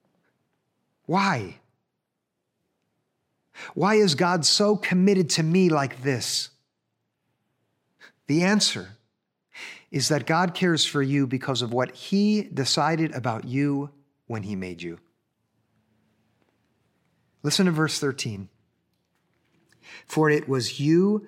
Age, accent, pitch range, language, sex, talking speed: 50-69, American, 130-175 Hz, English, male, 105 wpm